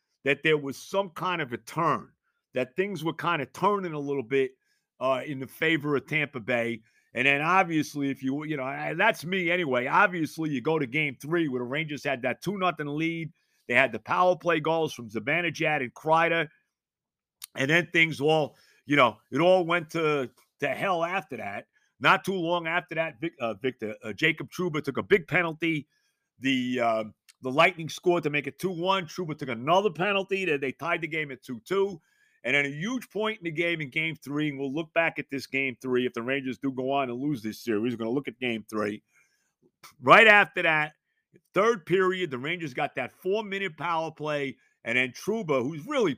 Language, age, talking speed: English, 50-69, 210 wpm